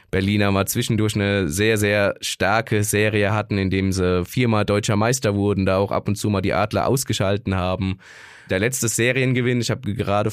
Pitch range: 95-120 Hz